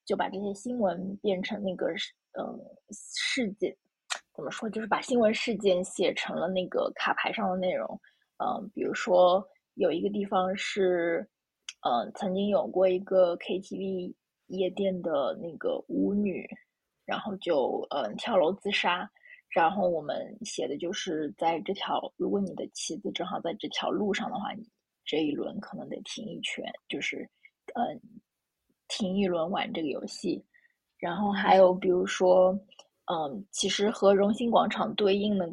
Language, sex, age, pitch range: Chinese, female, 20-39, 185-210 Hz